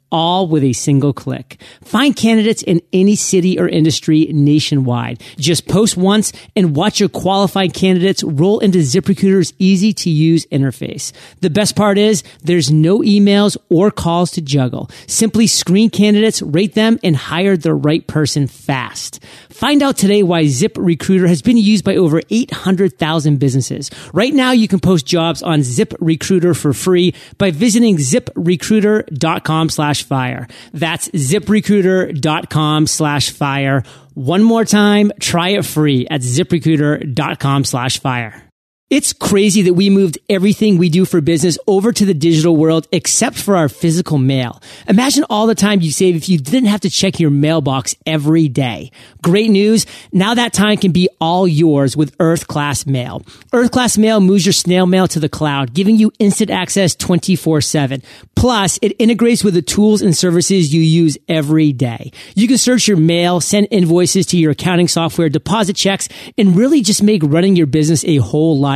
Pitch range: 150-200 Hz